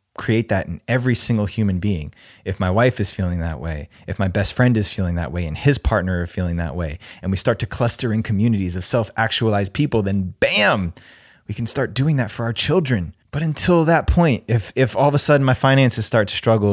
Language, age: English, 20-39